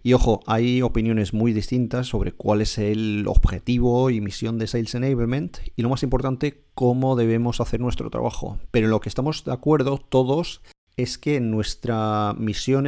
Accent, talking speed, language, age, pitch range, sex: Spanish, 170 wpm, Spanish, 40-59, 110-125 Hz, male